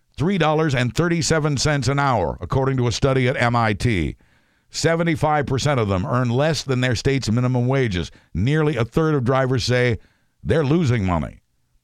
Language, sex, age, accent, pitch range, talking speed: English, male, 60-79, American, 110-150 Hz, 135 wpm